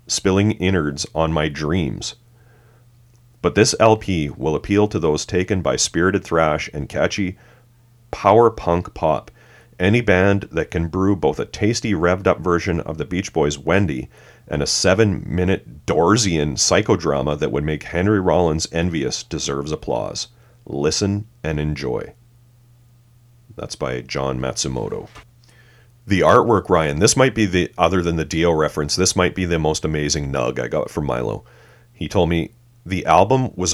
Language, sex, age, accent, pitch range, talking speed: English, male, 40-59, American, 80-115 Hz, 155 wpm